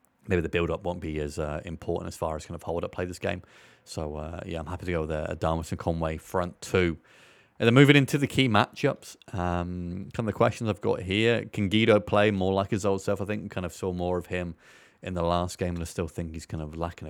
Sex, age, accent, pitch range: male, 30-49, British, 85-105 Hz